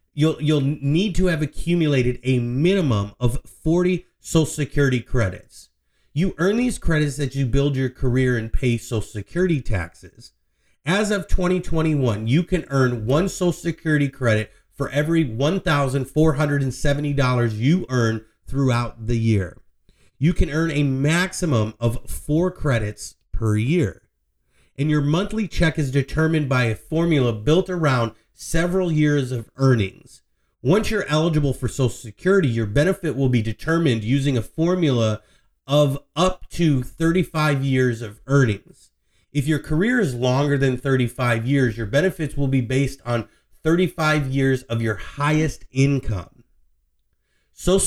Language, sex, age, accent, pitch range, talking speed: English, male, 30-49, American, 120-160 Hz, 140 wpm